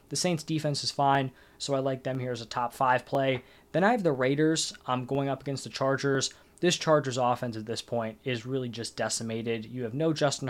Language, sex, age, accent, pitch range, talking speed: English, male, 20-39, American, 125-145 Hz, 225 wpm